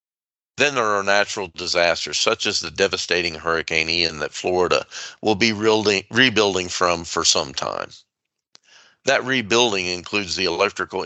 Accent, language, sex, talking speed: American, English, male, 135 wpm